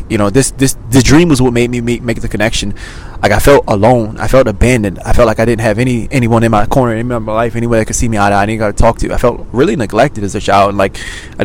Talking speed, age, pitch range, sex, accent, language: 300 wpm, 20-39, 100-120 Hz, male, American, English